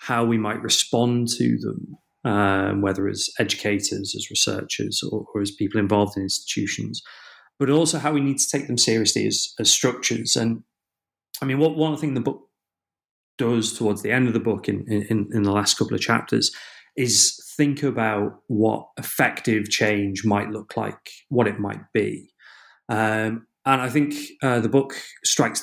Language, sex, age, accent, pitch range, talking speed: English, male, 30-49, British, 105-125 Hz, 175 wpm